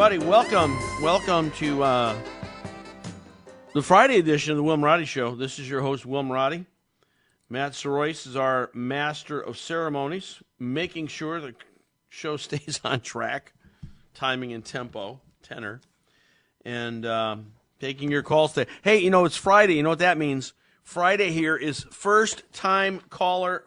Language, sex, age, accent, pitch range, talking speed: English, male, 50-69, American, 135-175 Hz, 145 wpm